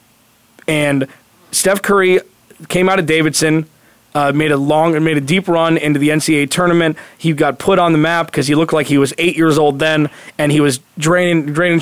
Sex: male